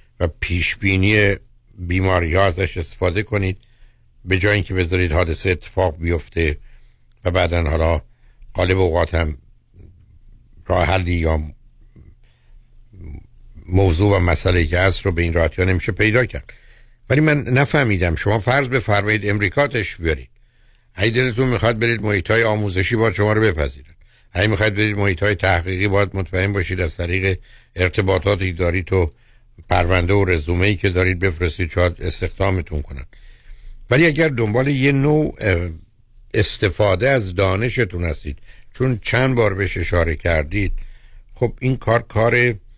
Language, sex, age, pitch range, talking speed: Persian, male, 60-79, 85-110 Hz, 130 wpm